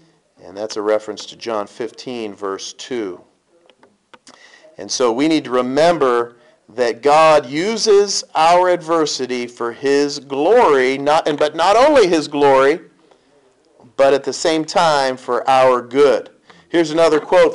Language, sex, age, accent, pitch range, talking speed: English, male, 40-59, American, 120-165 Hz, 140 wpm